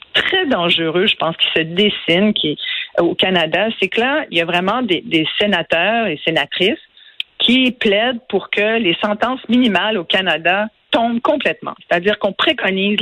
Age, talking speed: 50-69, 165 wpm